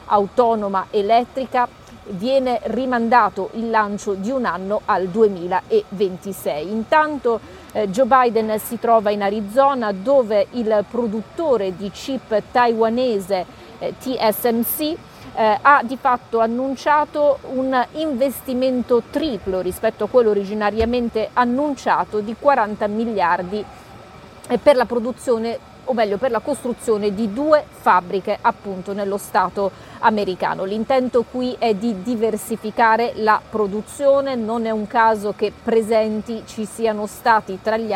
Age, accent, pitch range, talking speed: 40-59, native, 205-245 Hz, 120 wpm